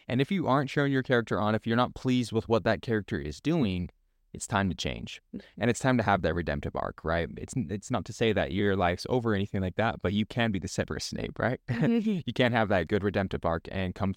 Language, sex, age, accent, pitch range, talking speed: English, male, 20-39, American, 95-125 Hz, 260 wpm